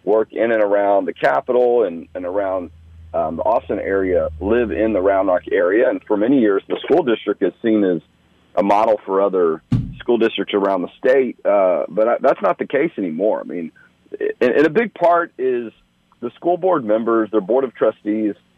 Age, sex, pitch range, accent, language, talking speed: 40-59, male, 100-130 Hz, American, English, 195 wpm